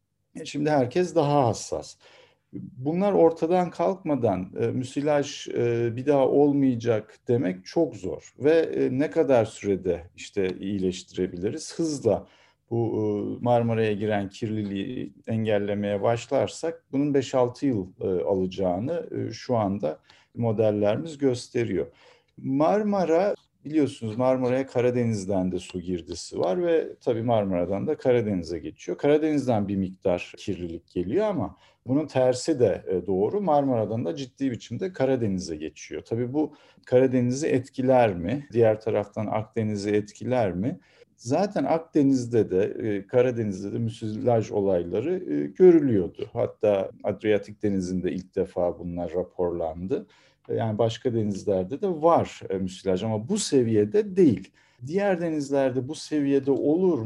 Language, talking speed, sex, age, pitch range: Turkish, 115 wpm, male, 50-69, 105-150 Hz